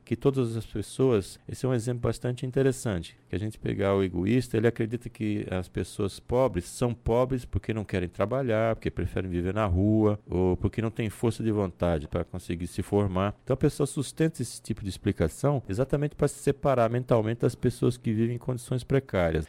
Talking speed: 195 wpm